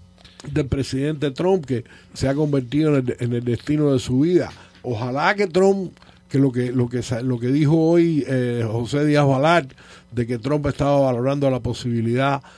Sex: male